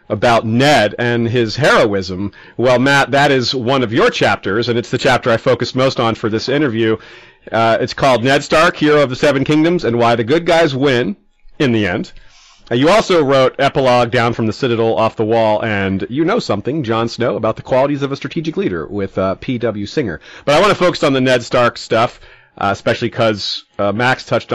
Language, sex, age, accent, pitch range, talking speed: English, male, 40-59, American, 115-150 Hz, 215 wpm